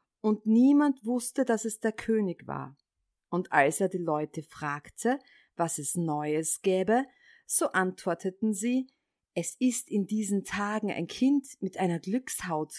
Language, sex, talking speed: German, female, 145 wpm